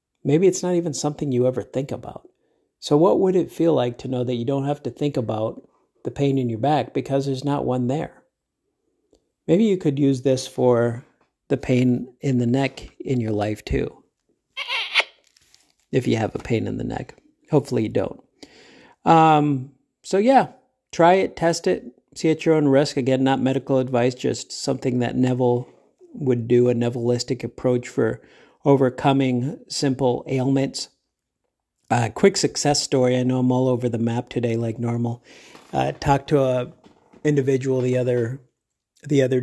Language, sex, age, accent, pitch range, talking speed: English, male, 50-69, American, 125-145 Hz, 170 wpm